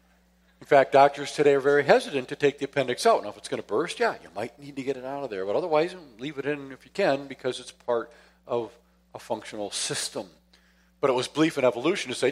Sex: male